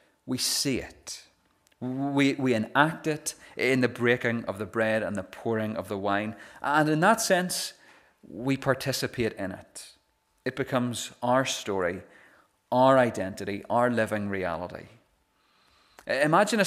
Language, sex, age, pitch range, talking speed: English, male, 30-49, 110-135 Hz, 135 wpm